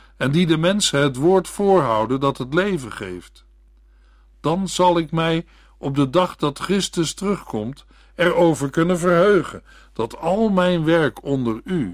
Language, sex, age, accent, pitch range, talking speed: Dutch, male, 60-79, Dutch, 105-175 Hz, 150 wpm